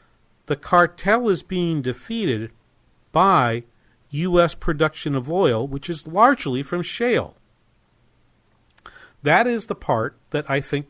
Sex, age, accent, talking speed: male, 50-69, American, 120 wpm